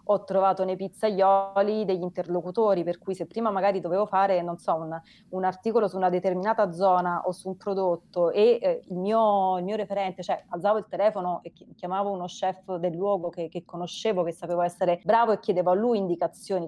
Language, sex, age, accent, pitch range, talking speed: Italian, female, 30-49, native, 175-200 Hz, 200 wpm